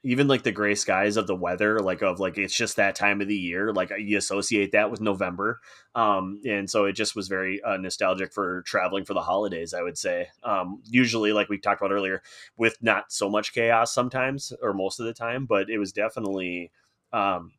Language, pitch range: English, 100-115 Hz